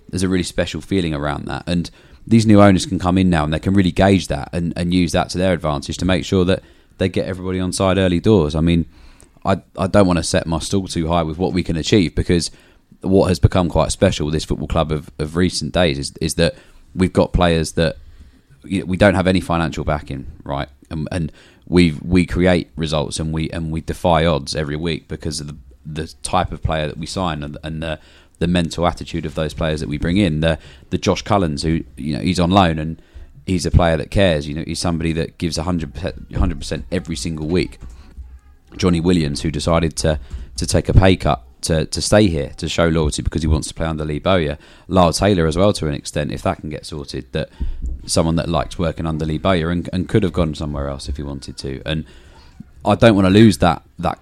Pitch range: 75-90 Hz